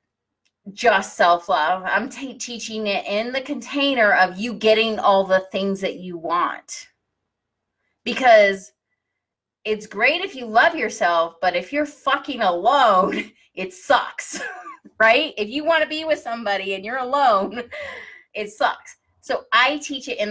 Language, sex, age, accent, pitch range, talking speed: English, female, 30-49, American, 155-245 Hz, 145 wpm